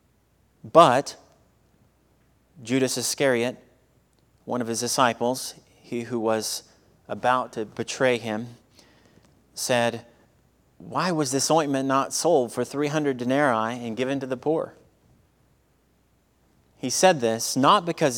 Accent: American